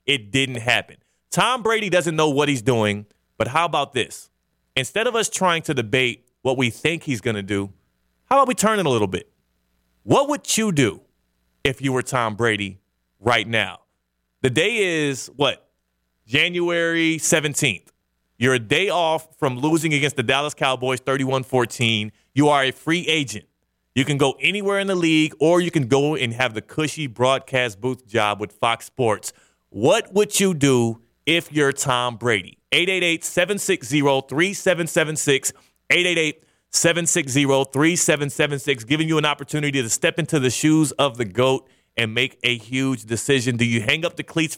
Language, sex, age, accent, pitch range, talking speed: English, male, 30-49, American, 125-155 Hz, 165 wpm